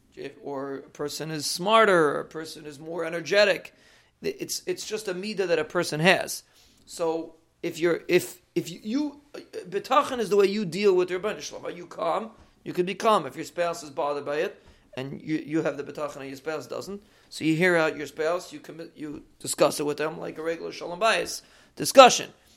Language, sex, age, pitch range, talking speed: English, male, 40-59, 155-190 Hz, 215 wpm